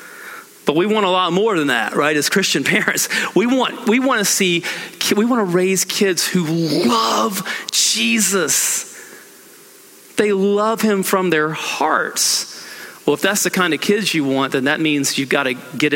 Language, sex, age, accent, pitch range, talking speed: English, male, 40-59, American, 135-200 Hz, 180 wpm